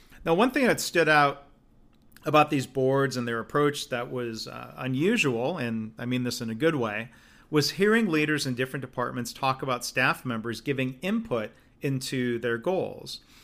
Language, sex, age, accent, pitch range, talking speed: English, male, 40-59, American, 120-160 Hz, 175 wpm